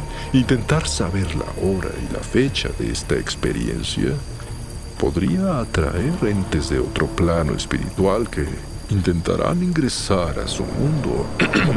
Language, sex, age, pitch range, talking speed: Spanish, male, 50-69, 85-130 Hz, 115 wpm